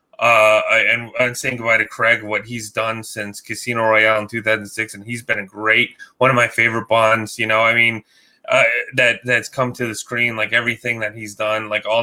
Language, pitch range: English, 110-125 Hz